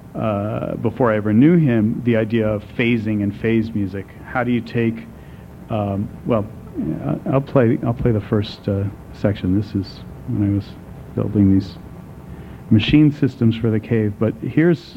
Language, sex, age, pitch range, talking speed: English, male, 40-59, 105-130 Hz, 165 wpm